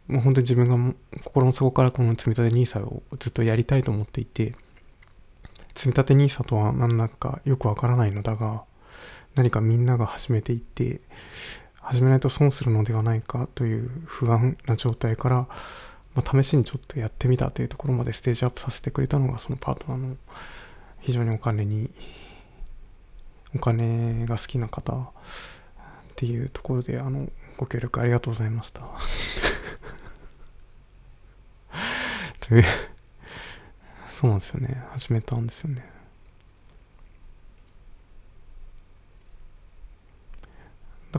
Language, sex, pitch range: Japanese, male, 110-130 Hz